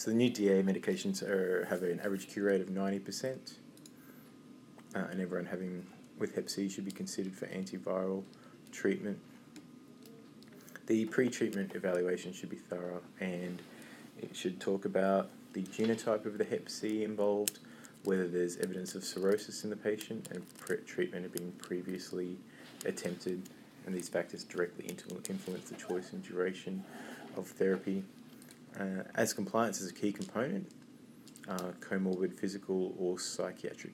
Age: 20-39